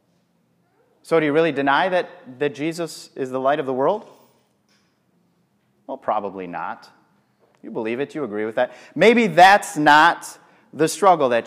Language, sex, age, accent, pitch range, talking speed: English, male, 30-49, American, 140-175 Hz, 155 wpm